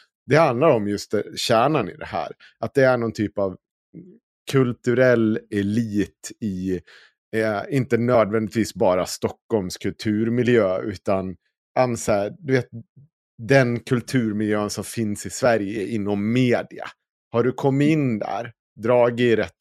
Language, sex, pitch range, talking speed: Swedish, male, 100-125 Hz, 120 wpm